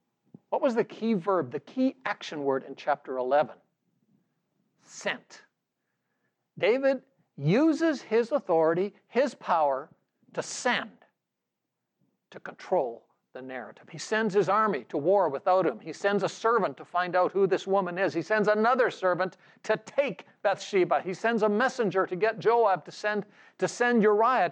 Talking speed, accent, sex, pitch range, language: 150 wpm, American, male, 165-230 Hz, English